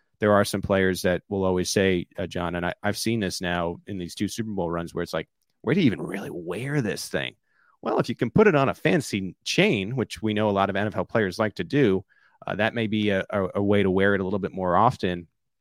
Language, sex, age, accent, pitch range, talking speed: English, male, 30-49, American, 90-110 Hz, 265 wpm